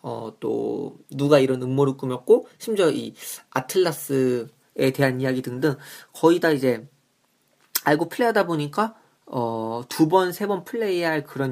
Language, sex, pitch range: Korean, male, 135-190 Hz